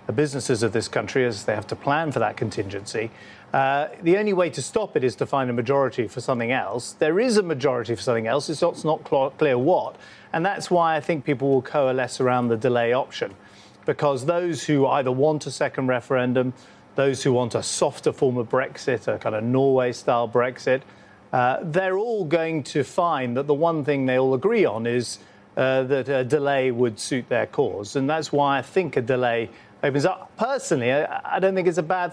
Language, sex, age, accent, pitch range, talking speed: English, male, 40-59, British, 120-155 Hz, 205 wpm